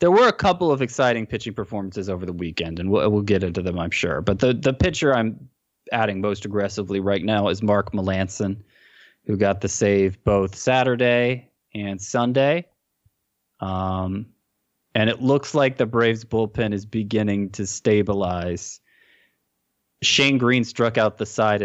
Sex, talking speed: male, 160 wpm